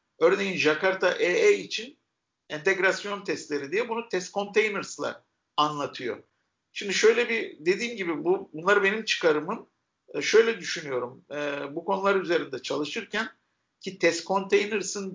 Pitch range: 160-235 Hz